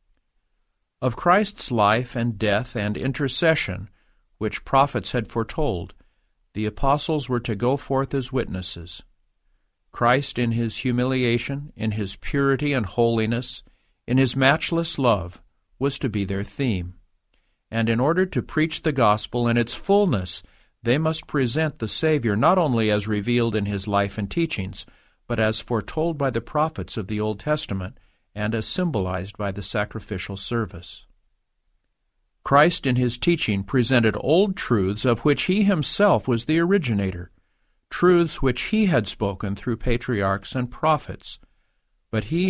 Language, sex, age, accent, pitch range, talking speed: English, male, 50-69, American, 105-140 Hz, 145 wpm